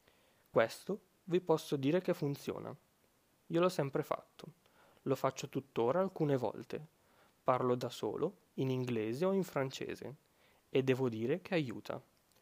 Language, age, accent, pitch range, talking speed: Italian, 20-39, native, 125-165 Hz, 135 wpm